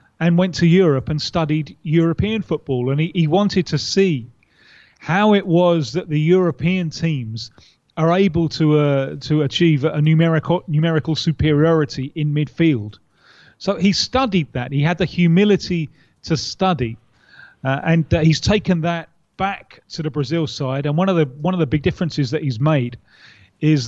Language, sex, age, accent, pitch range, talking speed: English, male, 30-49, British, 145-170 Hz, 170 wpm